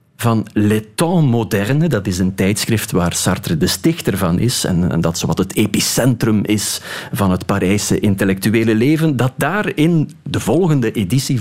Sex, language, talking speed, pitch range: male, Dutch, 170 wpm, 100-140 Hz